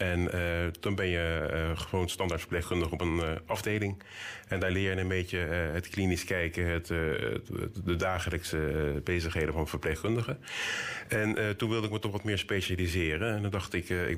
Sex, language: male, Dutch